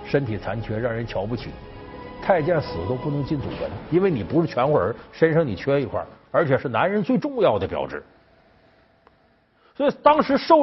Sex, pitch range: male, 120-185 Hz